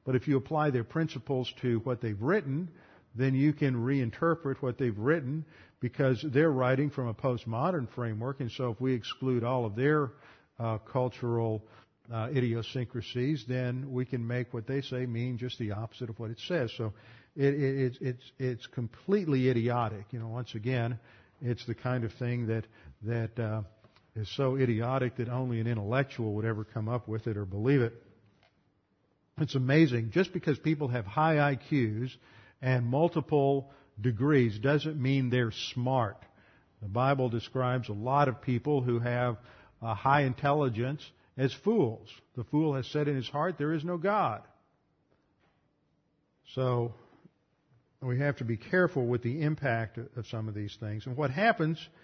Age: 50-69